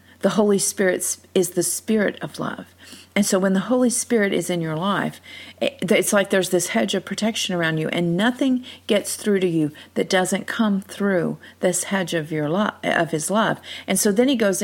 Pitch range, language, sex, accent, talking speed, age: 175-220 Hz, English, female, American, 195 wpm, 50-69